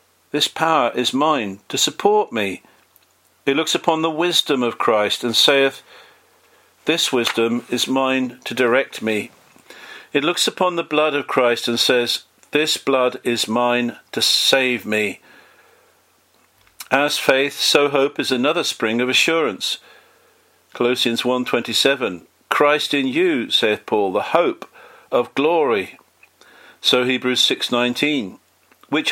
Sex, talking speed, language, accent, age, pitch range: male, 130 wpm, English, British, 50-69, 125-165 Hz